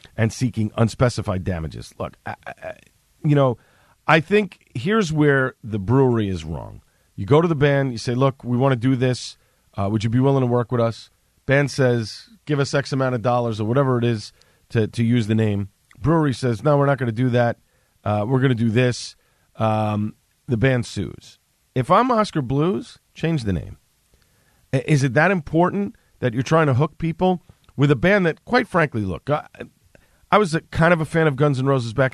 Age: 40-59